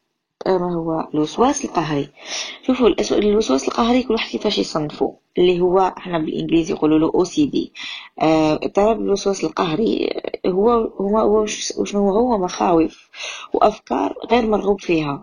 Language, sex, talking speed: Arabic, female, 110 wpm